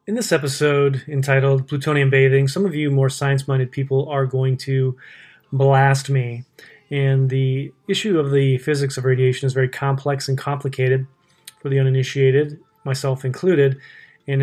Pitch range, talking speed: 130-145 Hz, 150 wpm